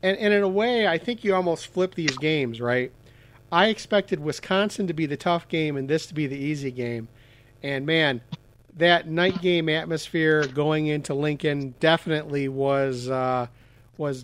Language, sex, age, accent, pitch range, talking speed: English, male, 50-69, American, 135-170 Hz, 170 wpm